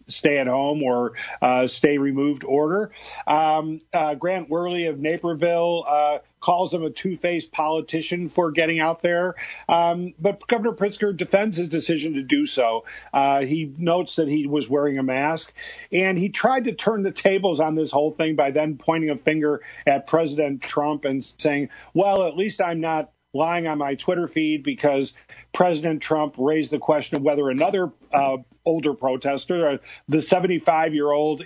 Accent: American